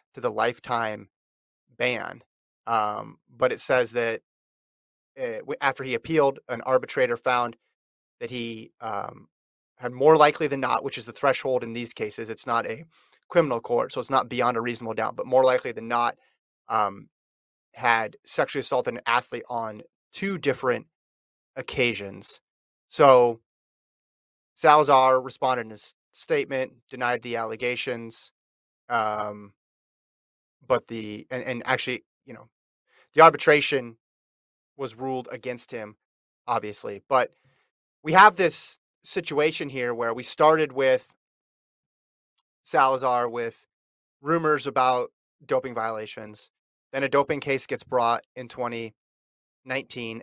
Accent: American